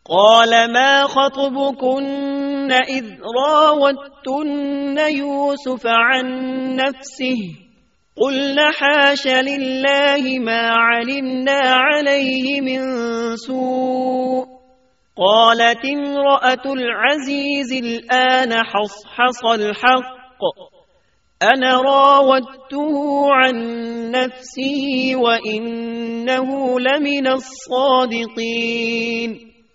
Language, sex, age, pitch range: Urdu, male, 30-49, 230-275 Hz